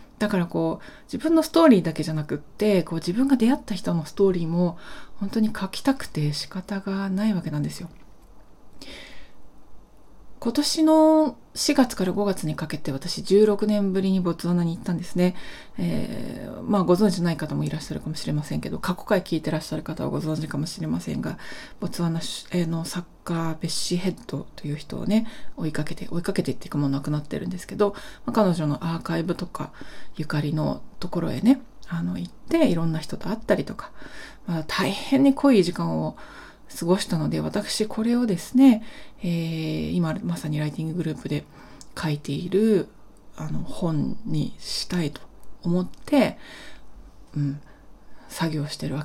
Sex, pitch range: female, 160-225 Hz